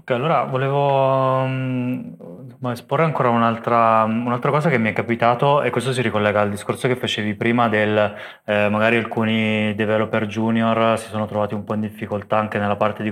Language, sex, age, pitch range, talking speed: Italian, male, 20-39, 105-120 Hz, 175 wpm